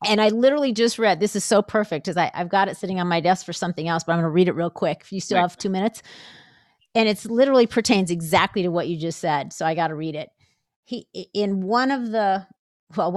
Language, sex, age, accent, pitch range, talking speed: English, female, 40-59, American, 185-240 Hz, 245 wpm